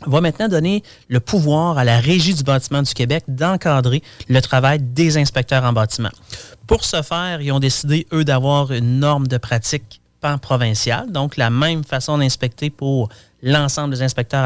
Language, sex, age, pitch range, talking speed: French, male, 30-49, 125-155 Hz, 170 wpm